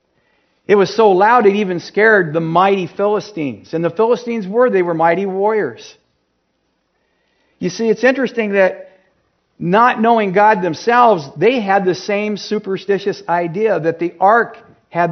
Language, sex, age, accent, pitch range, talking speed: English, male, 50-69, American, 150-190 Hz, 145 wpm